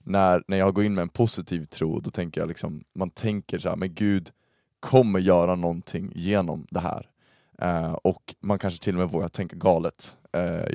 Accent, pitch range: native, 85-105 Hz